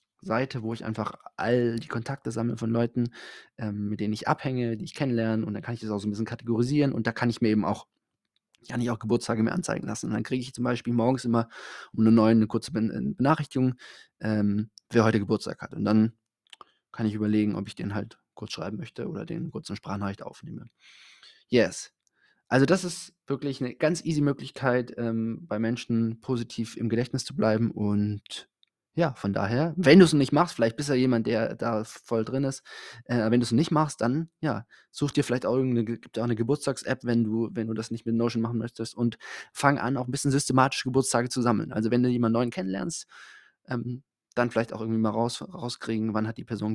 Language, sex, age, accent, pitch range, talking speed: German, male, 20-39, German, 110-130 Hz, 215 wpm